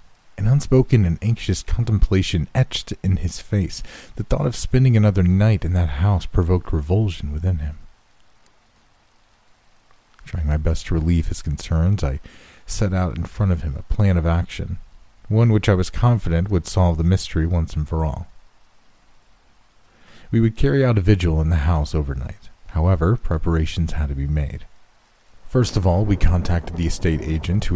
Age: 40-59